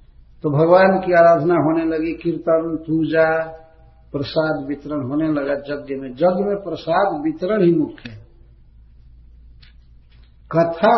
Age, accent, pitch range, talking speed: 50-69, native, 120-180 Hz, 120 wpm